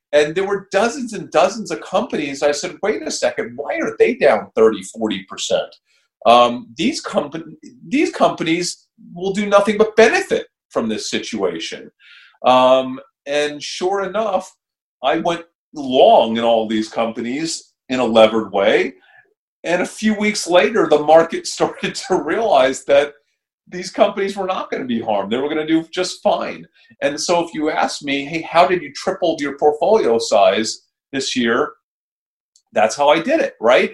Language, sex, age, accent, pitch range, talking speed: English, male, 40-59, American, 150-200 Hz, 170 wpm